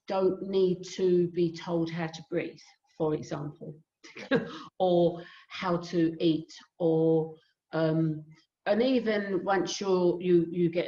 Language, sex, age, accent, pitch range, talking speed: English, female, 50-69, British, 170-230 Hz, 125 wpm